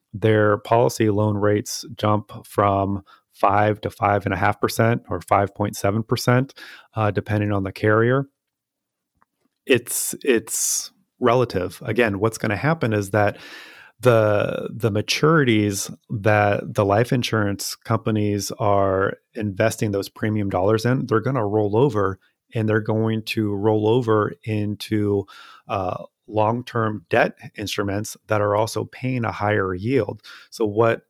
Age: 30-49